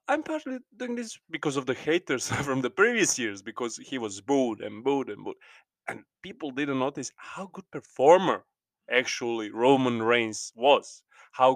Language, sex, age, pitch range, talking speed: English, male, 20-39, 120-175 Hz, 165 wpm